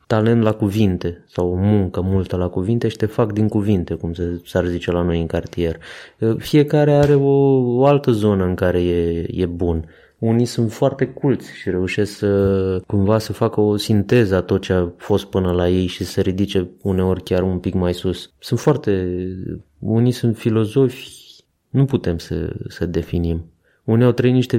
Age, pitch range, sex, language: 20-39, 90-115 Hz, male, Romanian